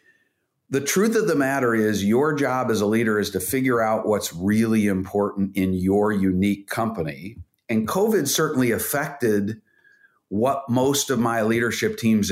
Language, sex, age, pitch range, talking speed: English, male, 50-69, 105-135 Hz, 155 wpm